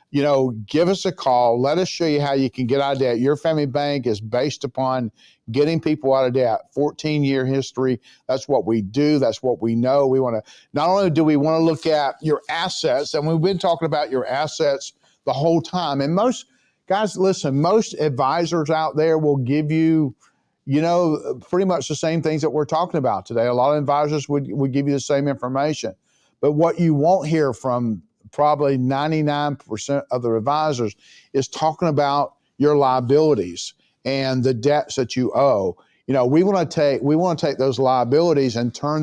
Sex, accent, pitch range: male, American, 130-155 Hz